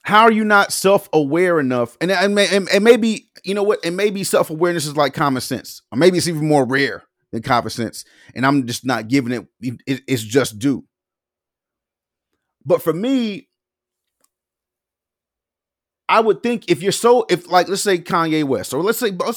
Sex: male